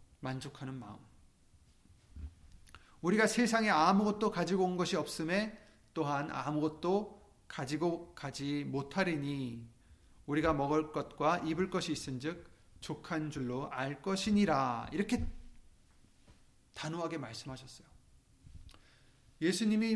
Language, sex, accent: Korean, male, native